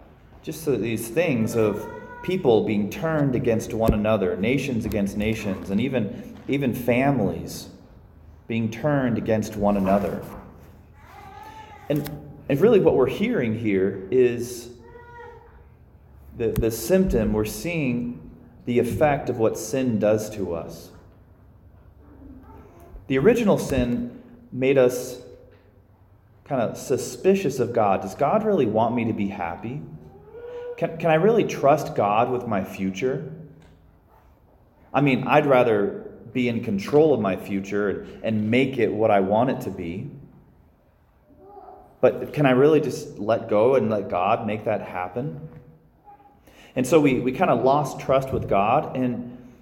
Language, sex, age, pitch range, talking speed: English, male, 30-49, 100-145 Hz, 140 wpm